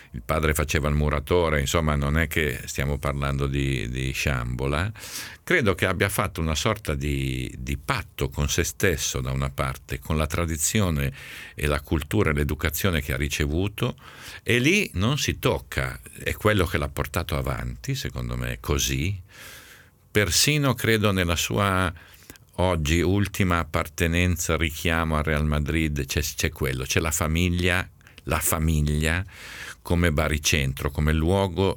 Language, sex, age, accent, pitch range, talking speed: Italian, male, 50-69, native, 70-95 Hz, 145 wpm